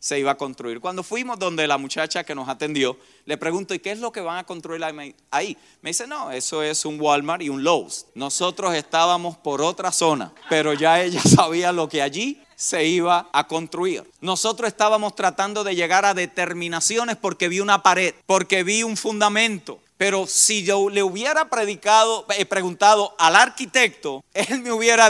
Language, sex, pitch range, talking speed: Spanish, male, 155-215 Hz, 180 wpm